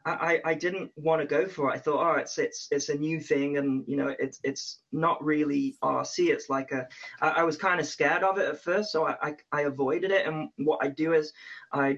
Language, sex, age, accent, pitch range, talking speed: English, male, 20-39, British, 140-180 Hz, 250 wpm